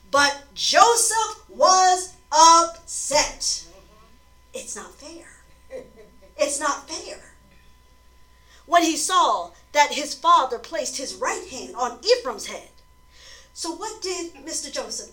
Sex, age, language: female, 40-59, English